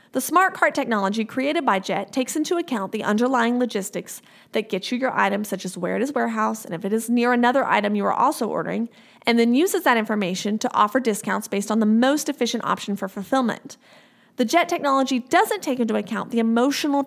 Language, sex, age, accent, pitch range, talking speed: English, female, 30-49, American, 210-270 Hz, 210 wpm